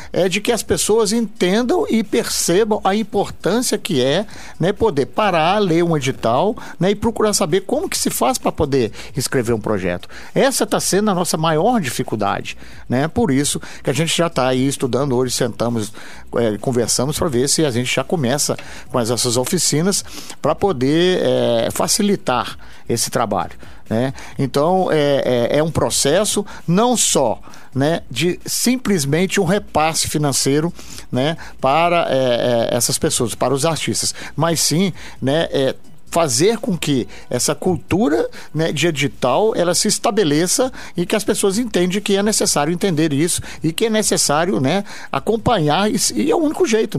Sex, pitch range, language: male, 140-205 Hz, Portuguese